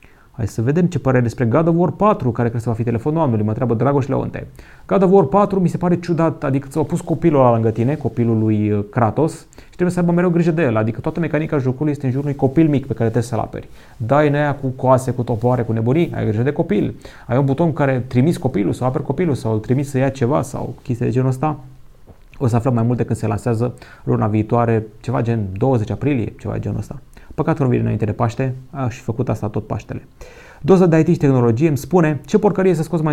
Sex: male